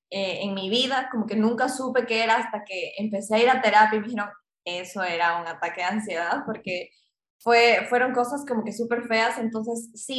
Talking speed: 210 wpm